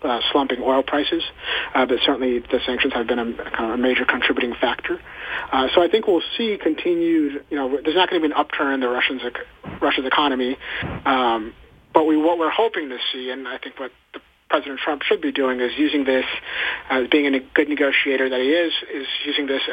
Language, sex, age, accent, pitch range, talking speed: English, male, 30-49, American, 125-150 Hz, 215 wpm